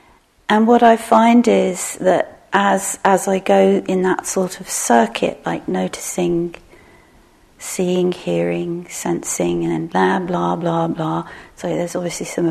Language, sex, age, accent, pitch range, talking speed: English, female, 40-59, British, 175-195 Hz, 140 wpm